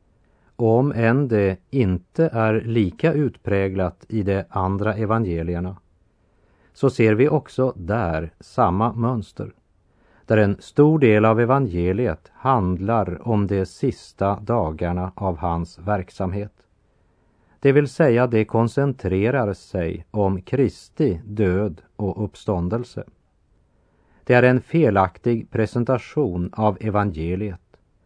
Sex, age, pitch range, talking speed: male, 40-59, 95-120 Hz, 105 wpm